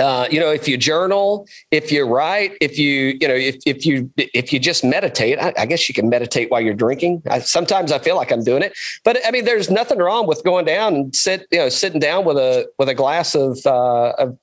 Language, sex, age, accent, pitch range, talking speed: English, male, 40-59, American, 140-190 Hz, 250 wpm